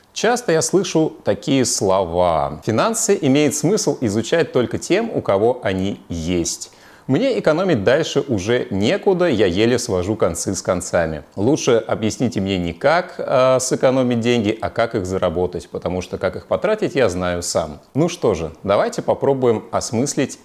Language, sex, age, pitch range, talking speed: Russian, male, 30-49, 90-120 Hz, 150 wpm